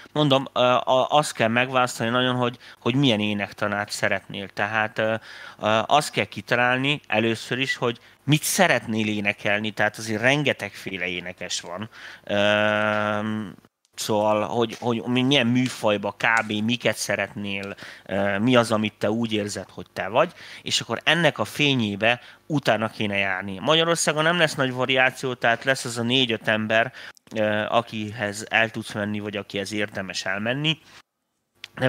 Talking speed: 130 wpm